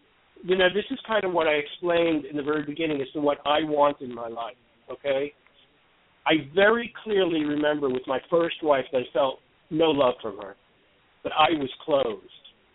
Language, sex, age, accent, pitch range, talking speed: English, male, 50-69, American, 135-165 Hz, 195 wpm